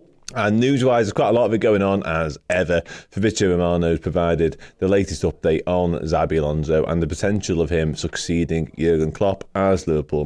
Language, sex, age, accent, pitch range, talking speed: English, male, 30-49, British, 80-100 Hz, 185 wpm